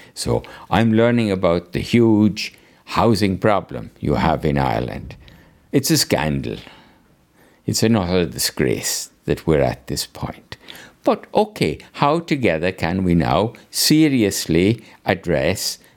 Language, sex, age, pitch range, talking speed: English, male, 60-79, 85-130 Hz, 120 wpm